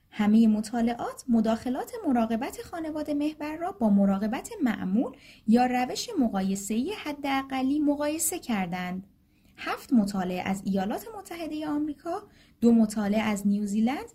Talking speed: 120 wpm